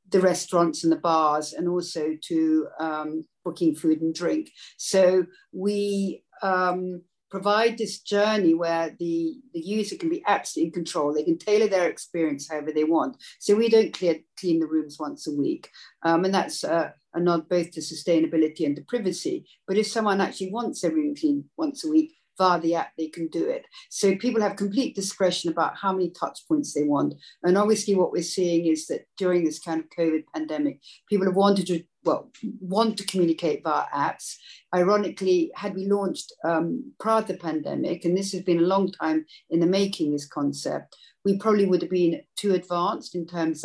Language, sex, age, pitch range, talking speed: English, female, 60-79, 165-205 Hz, 195 wpm